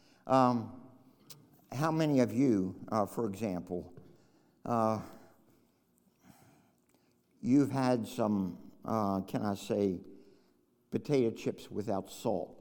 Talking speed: 95 wpm